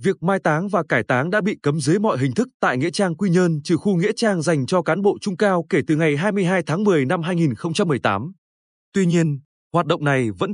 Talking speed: 240 wpm